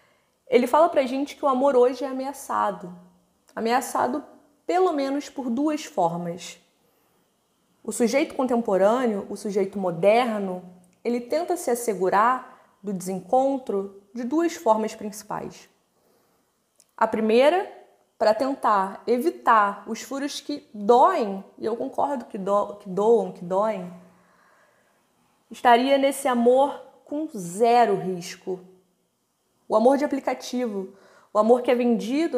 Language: Portuguese